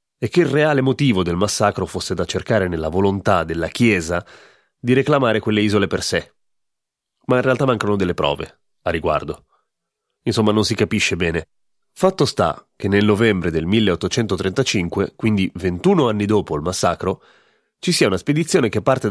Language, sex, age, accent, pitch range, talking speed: Italian, male, 30-49, native, 90-125 Hz, 165 wpm